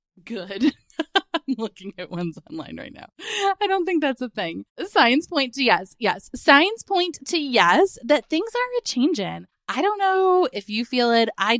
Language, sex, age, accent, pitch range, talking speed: English, female, 20-39, American, 195-295 Hz, 190 wpm